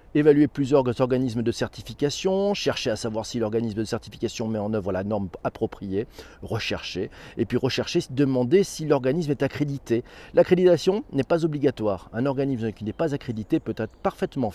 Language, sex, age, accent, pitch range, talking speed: French, male, 40-59, French, 115-155 Hz, 165 wpm